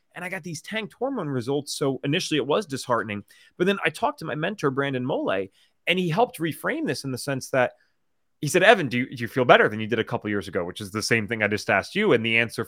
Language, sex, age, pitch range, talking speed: English, male, 30-49, 115-165 Hz, 275 wpm